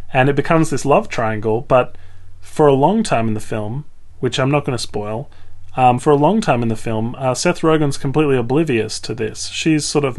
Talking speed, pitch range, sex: 220 wpm, 110-145 Hz, male